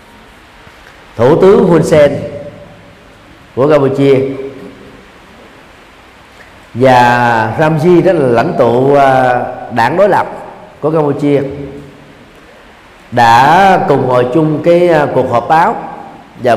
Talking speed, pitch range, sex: 95 wpm, 130-180 Hz, male